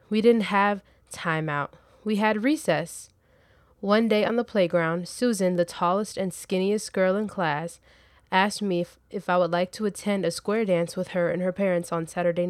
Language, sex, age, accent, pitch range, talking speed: English, female, 20-39, American, 170-200 Hz, 190 wpm